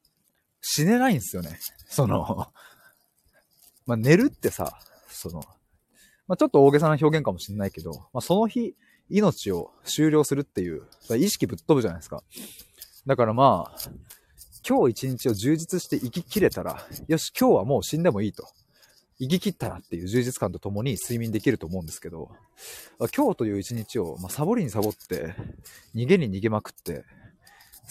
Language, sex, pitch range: Japanese, male, 105-165 Hz